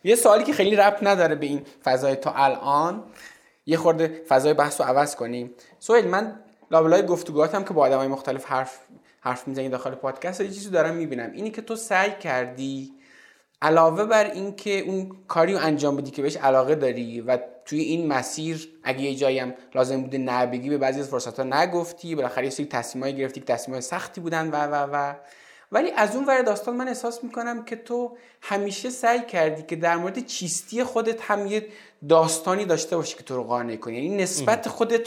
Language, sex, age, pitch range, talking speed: Persian, male, 20-39, 140-200 Hz, 190 wpm